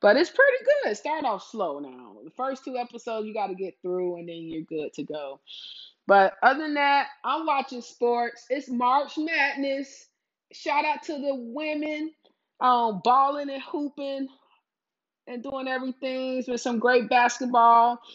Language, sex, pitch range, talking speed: English, female, 195-260 Hz, 160 wpm